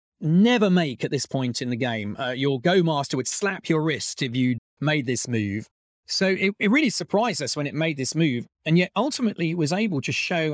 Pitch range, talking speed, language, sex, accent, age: 140-200 Hz, 230 wpm, English, male, British, 40-59